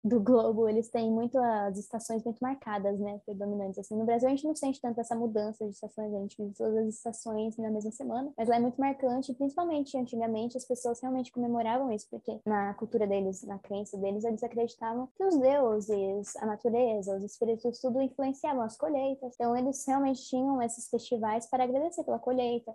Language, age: Portuguese, 10-29